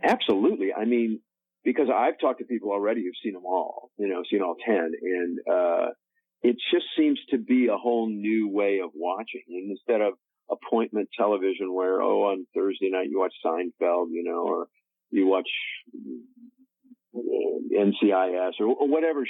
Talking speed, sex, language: 170 wpm, male, English